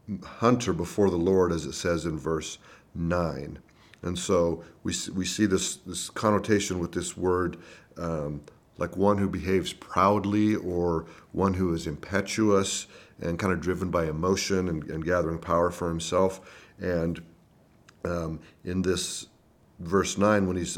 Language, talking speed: English, 150 wpm